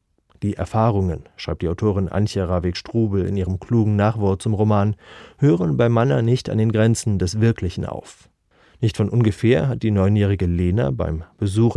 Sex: male